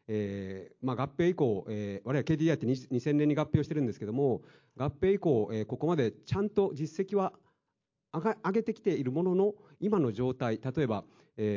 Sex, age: male, 40-59